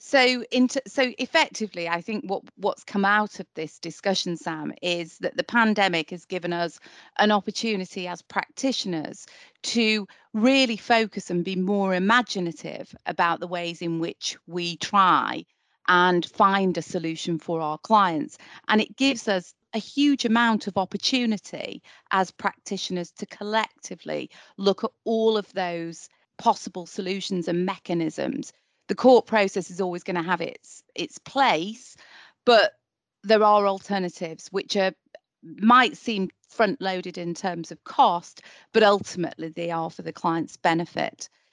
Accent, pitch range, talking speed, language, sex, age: British, 175-220 Hz, 145 wpm, English, female, 30-49